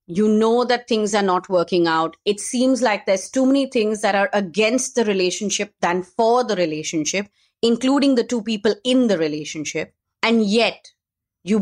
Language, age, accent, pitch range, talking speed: English, 30-49, Indian, 175-230 Hz, 175 wpm